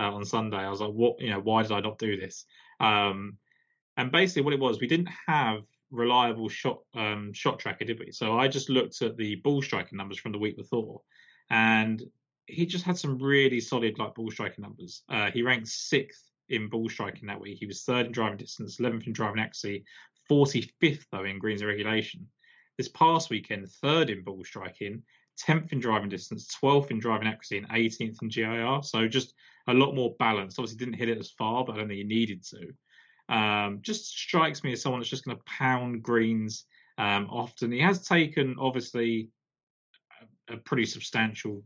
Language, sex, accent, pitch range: English, male, British, 105-130 Hz